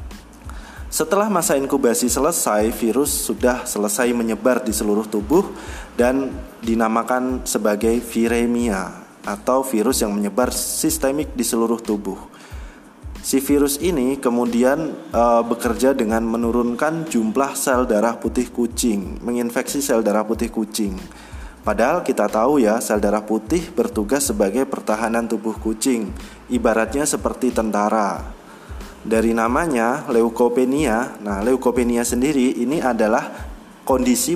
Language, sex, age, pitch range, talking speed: Indonesian, male, 20-39, 110-130 Hz, 115 wpm